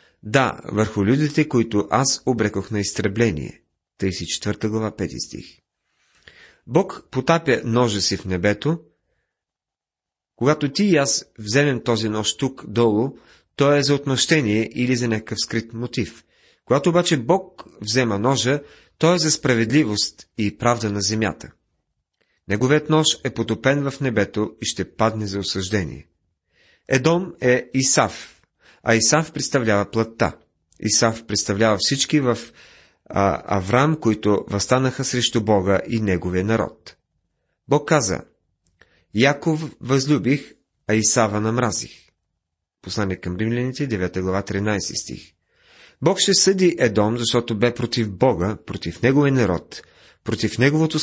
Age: 40-59